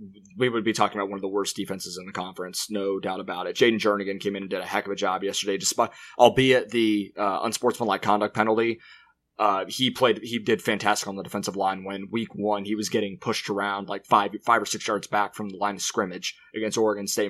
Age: 20-39